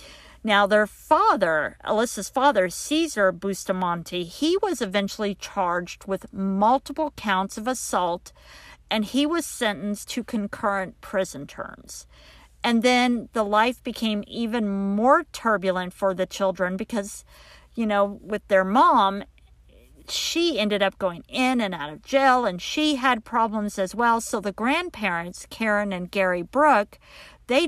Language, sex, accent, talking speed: English, female, American, 140 wpm